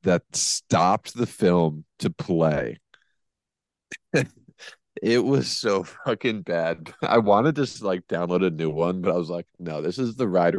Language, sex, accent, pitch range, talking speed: English, male, American, 80-100 Hz, 160 wpm